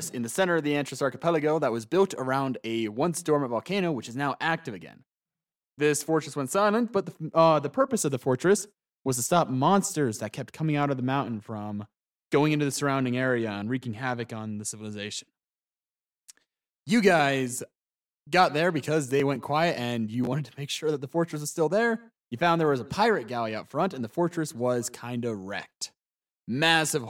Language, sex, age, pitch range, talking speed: English, male, 20-39, 120-160 Hz, 205 wpm